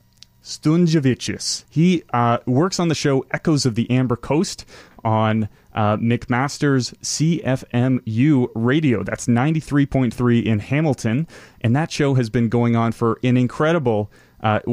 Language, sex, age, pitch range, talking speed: English, male, 30-49, 115-140 Hz, 145 wpm